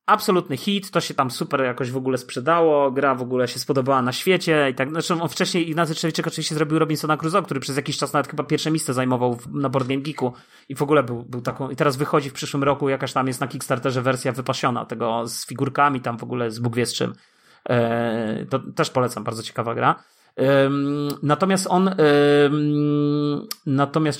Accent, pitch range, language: native, 130-165 Hz, Polish